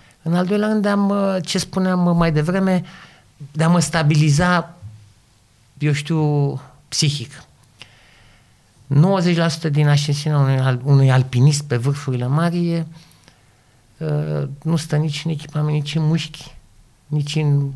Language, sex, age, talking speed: Romanian, male, 50-69, 115 wpm